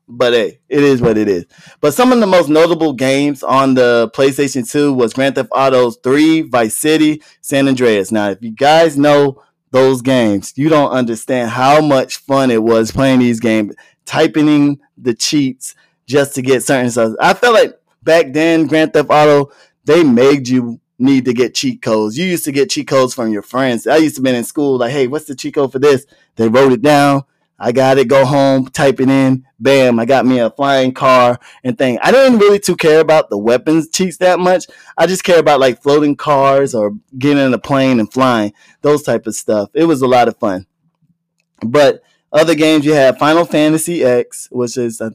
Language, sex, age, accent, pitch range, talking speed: English, male, 20-39, American, 125-155 Hz, 215 wpm